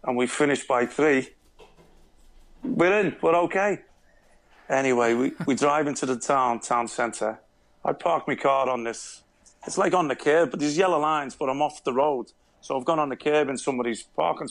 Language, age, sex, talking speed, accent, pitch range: English, 40-59, male, 195 wpm, British, 120-145 Hz